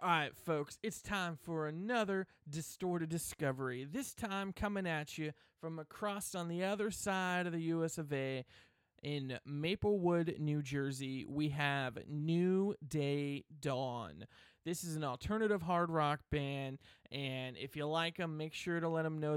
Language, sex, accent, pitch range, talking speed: English, male, American, 140-170 Hz, 160 wpm